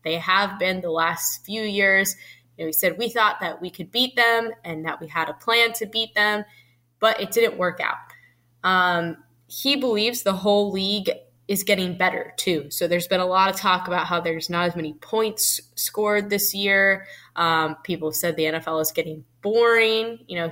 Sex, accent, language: female, American, English